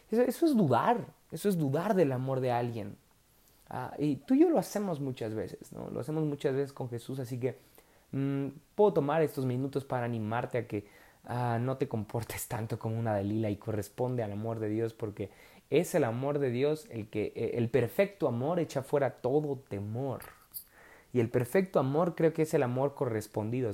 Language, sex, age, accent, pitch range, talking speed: Spanish, male, 30-49, Mexican, 120-155 Hz, 195 wpm